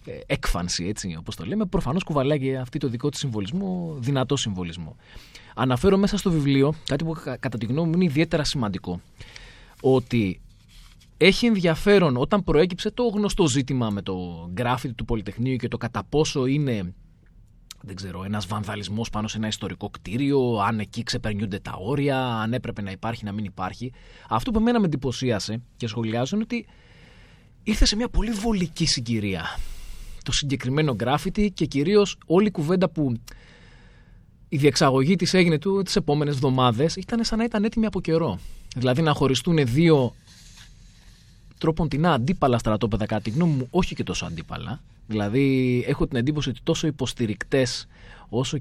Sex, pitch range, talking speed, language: male, 110-165 Hz, 155 wpm, Greek